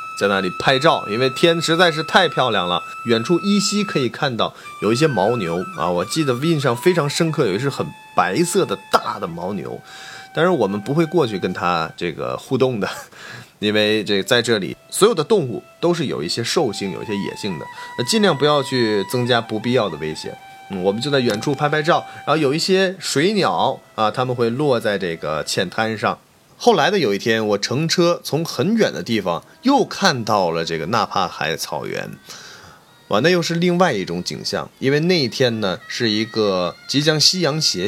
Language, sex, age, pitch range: Chinese, male, 30-49, 120-175 Hz